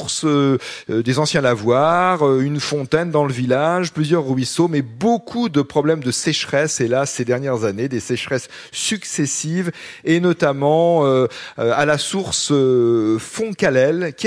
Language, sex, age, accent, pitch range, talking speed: French, male, 40-59, French, 120-160 Hz, 130 wpm